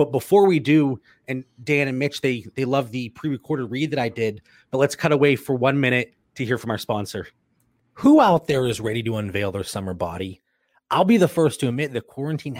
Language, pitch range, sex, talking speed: English, 125-165 Hz, male, 225 wpm